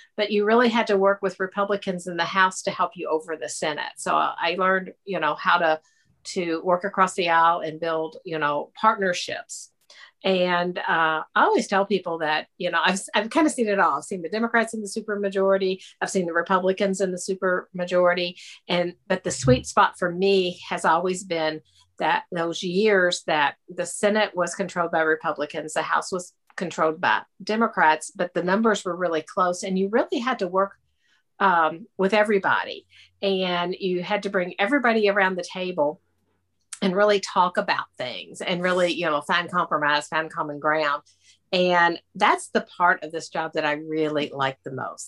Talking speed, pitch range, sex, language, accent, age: 190 wpm, 160-195 Hz, female, English, American, 50-69